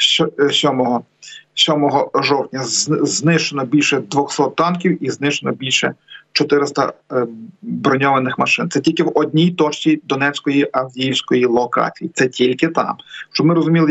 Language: Ukrainian